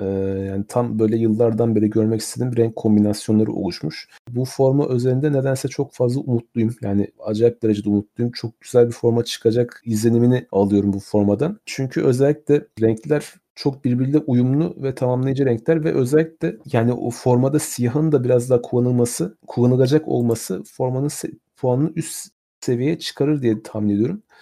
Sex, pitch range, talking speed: male, 115-140 Hz, 145 wpm